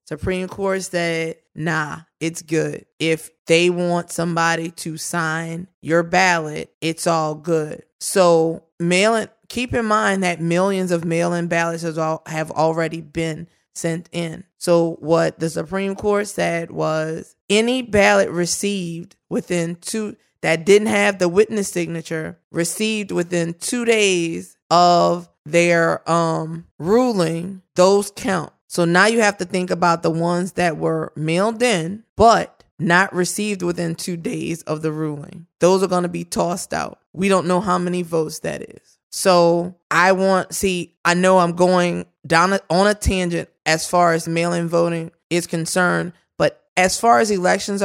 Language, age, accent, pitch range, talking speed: English, 20-39, American, 165-190 Hz, 155 wpm